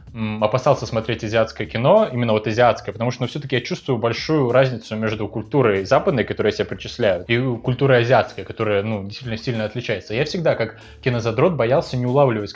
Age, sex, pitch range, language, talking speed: 20-39, male, 110-140 Hz, Russian, 170 wpm